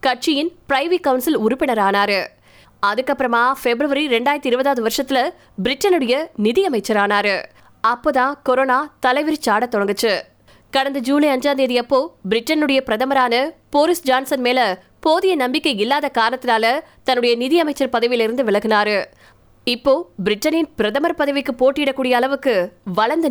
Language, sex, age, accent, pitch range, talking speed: Tamil, female, 20-39, native, 225-285 Hz, 65 wpm